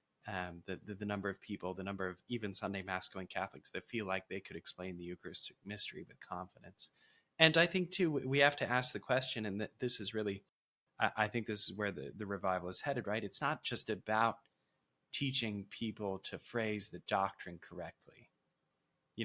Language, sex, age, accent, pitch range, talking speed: English, male, 20-39, American, 95-120 Hz, 195 wpm